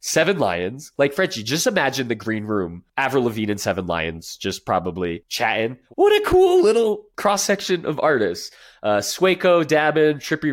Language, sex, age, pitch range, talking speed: English, male, 20-39, 100-155 Hz, 165 wpm